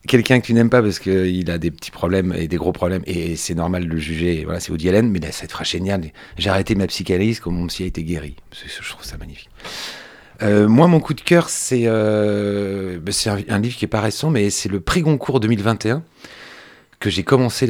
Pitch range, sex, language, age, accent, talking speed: 90-115 Hz, male, French, 40-59, French, 235 wpm